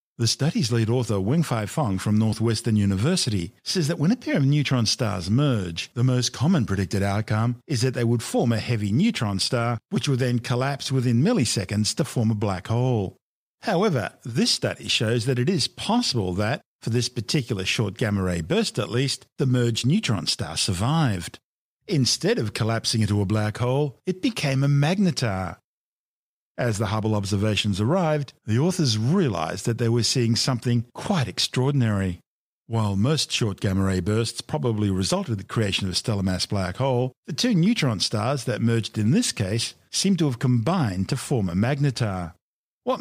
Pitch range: 105-135 Hz